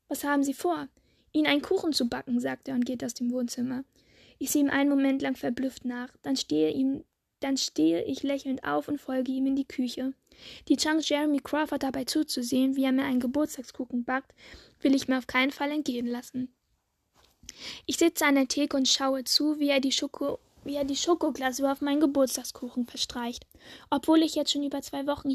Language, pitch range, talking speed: German, 260-290 Hz, 190 wpm